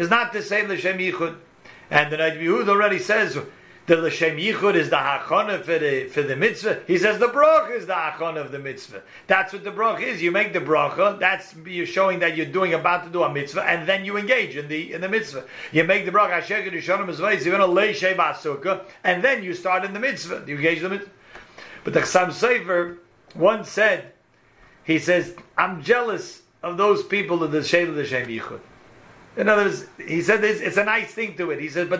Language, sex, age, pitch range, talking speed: English, male, 40-59, 170-200 Hz, 215 wpm